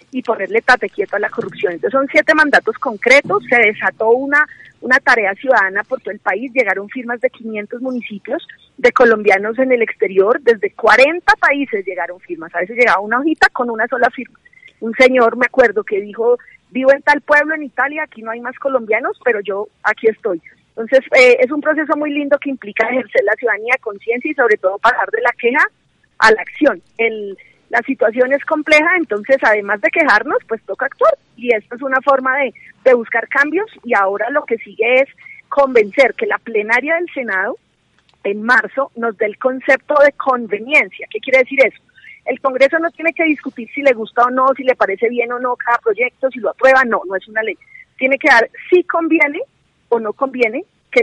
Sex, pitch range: female, 225-290 Hz